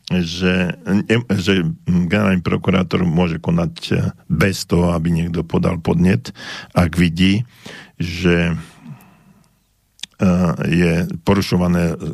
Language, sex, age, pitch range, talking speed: Slovak, male, 50-69, 85-105 Hz, 85 wpm